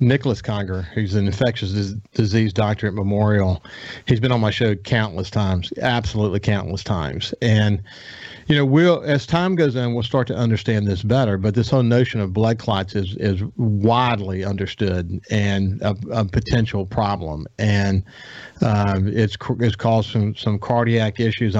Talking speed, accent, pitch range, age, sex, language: 160 wpm, American, 105-125 Hz, 40-59, male, English